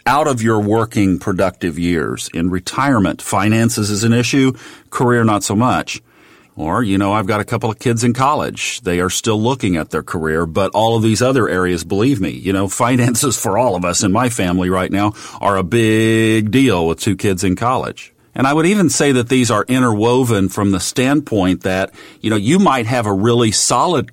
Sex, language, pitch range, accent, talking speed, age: male, English, 95-120 Hz, American, 210 wpm, 40-59